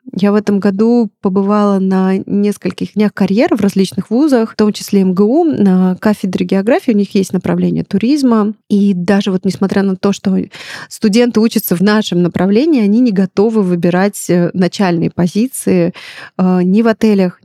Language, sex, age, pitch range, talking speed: Russian, female, 20-39, 190-220 Hz, 155 wpm